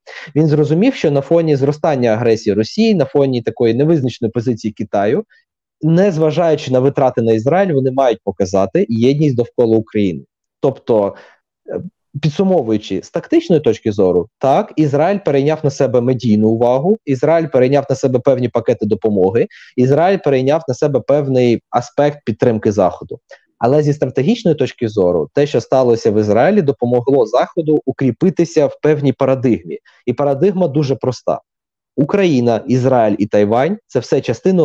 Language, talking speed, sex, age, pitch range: Ukrainian, 140 wpm, male, 20-39, 125-165 Hz